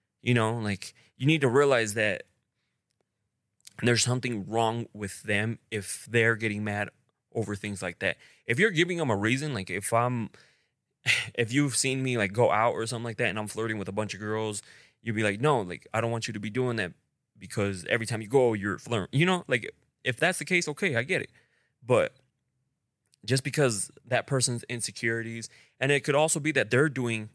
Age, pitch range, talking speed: 20-39, 105-130 Hz, 205 wpm